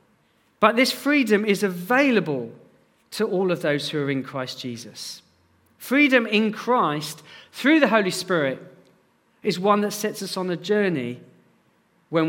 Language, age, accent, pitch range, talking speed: English, 40-59, British, 160-230 Hz, 145 wpm